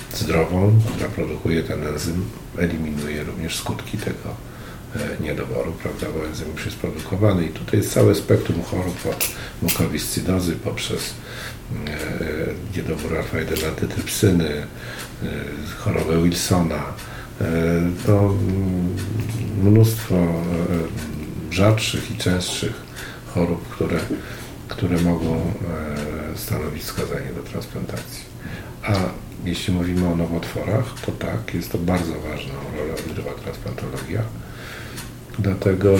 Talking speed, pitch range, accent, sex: 105 wpm, 85-110 Hz, native, male